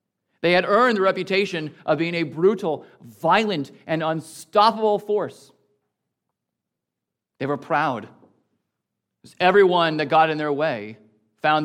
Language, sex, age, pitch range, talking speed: English, male, 40-59, 135-195 Hz, 120 wpm